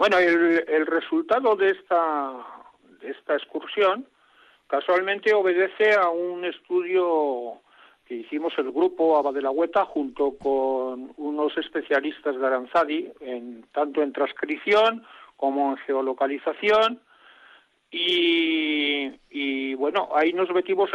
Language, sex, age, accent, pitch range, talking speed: Spanish, male, 50-69, Spanish, 150-205 Hz, 115 wpm